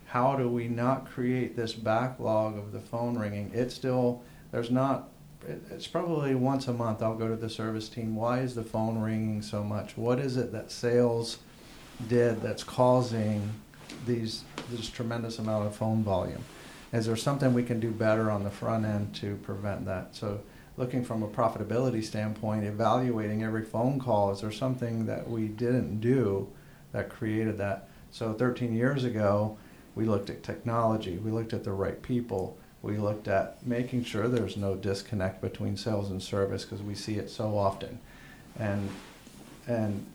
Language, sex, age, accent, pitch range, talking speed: English, male, 50-69, American, 105-125 Hz, 175 wpm